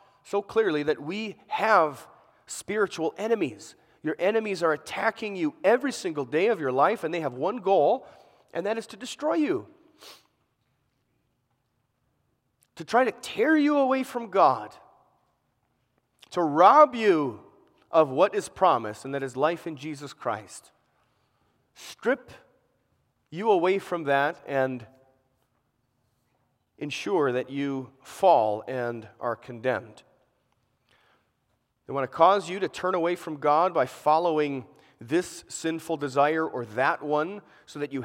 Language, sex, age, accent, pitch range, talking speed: English, male, 40-59, American, 130-190 Hz, 135 wpm